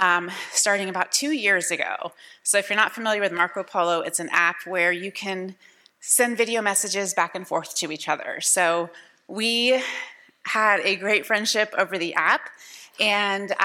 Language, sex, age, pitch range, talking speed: English, female, 30-49, 190-230 Hz, 170 wpm